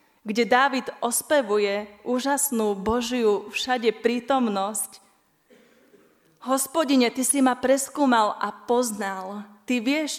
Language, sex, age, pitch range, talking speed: Slovak, female, 30-49, 205-240 Hz, 95 wpm